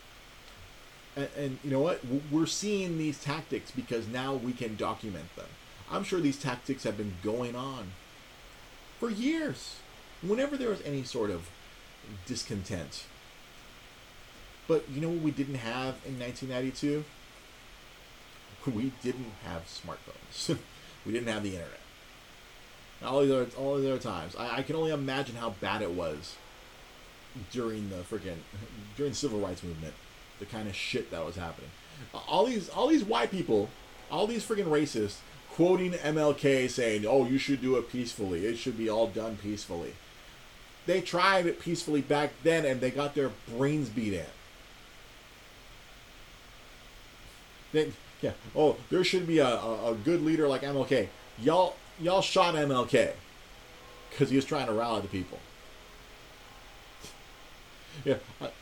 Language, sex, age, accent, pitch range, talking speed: English, male, 30-49, American, 110-145 Hz, 145 wpm